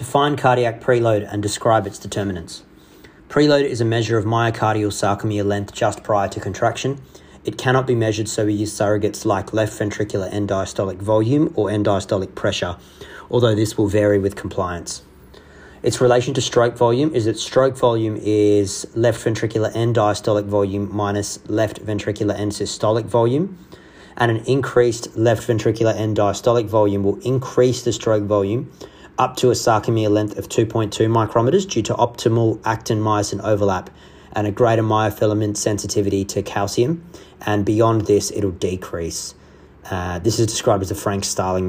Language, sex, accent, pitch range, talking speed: English, male, Australian, 100-120 Hz, 160 wpm